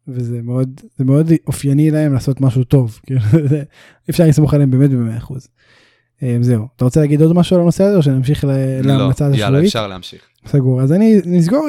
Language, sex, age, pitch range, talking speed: Hebrew, male, 20-39, 130-175 Hz, 190 wpm